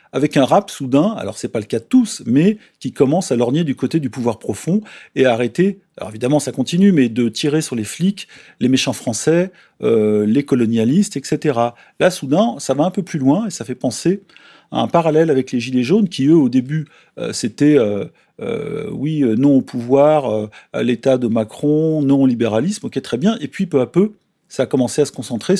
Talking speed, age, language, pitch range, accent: 225 wpm, 40-59, French, 125-175 Hz, French